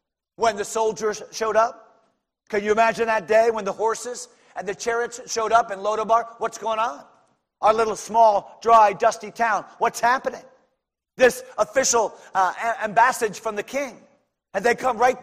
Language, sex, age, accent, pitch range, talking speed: English, male, 40-59, American, 220-260 Hz, 165 wpm